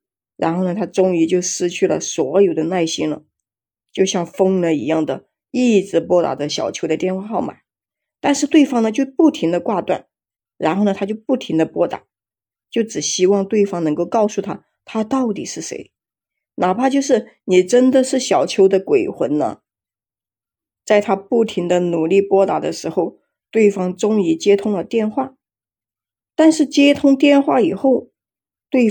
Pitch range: 175-245 Hz